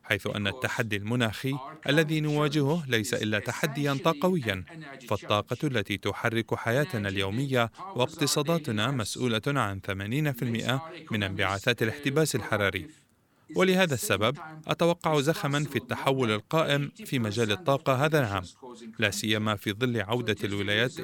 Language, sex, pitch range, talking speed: Arabic, male, 105-145 Hz, 115 wpm